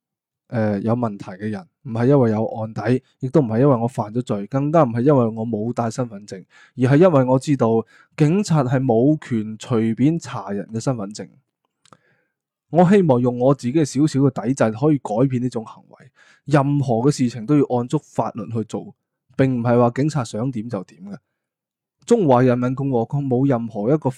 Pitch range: 115-140 Hz